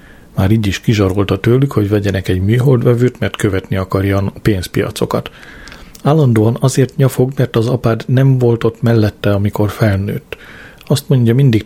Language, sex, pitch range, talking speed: Hungarian, male, 100-115 Hz, 145 wpm